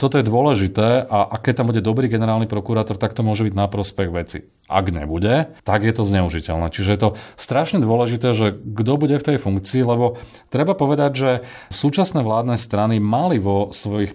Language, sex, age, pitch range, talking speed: Slovak, male, 30-49, 100-115 Hz, 185 wpm